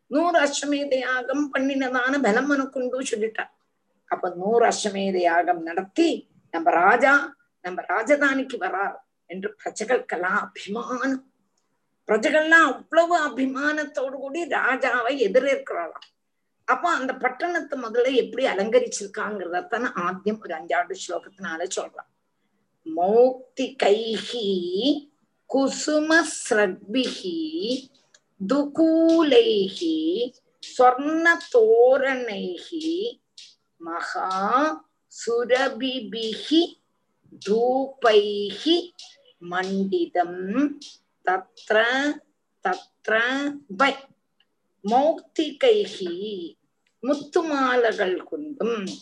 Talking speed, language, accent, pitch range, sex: 45 wpm, Tamil, native, 215-315 Hz, female